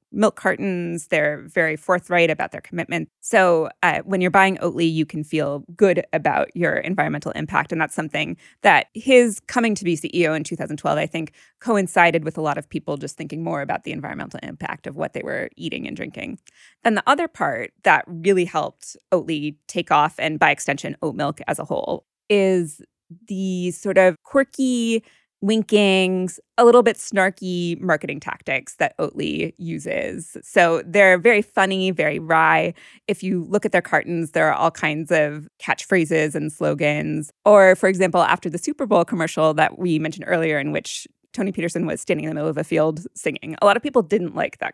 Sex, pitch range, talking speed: female, 165-210 Hz, 190 wpm